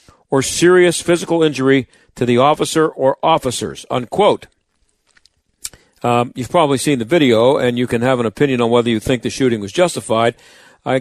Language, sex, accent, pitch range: English, male, American, 125-165 Hz